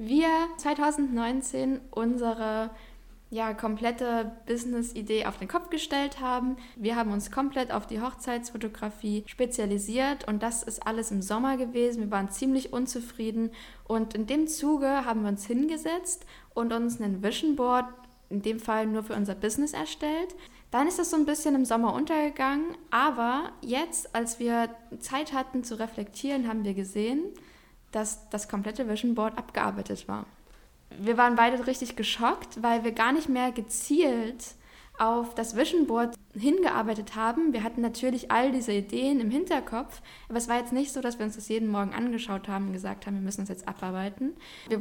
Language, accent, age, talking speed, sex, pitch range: German, German, 10-29, 170 wpm, female, 220-265 Hz